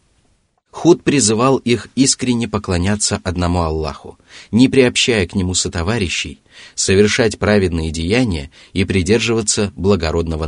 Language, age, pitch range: Russian, 30-49, 85-115 Hz